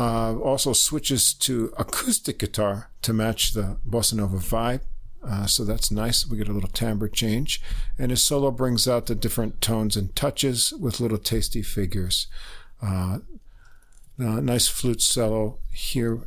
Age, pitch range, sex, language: 50-69, 105-130 Hz, male, English